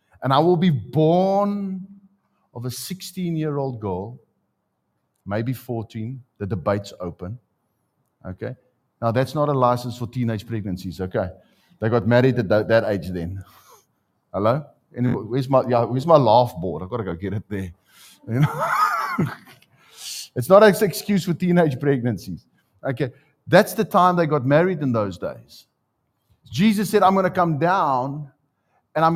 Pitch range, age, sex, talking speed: 120-175 Hz, 50-69, male, 155 wpm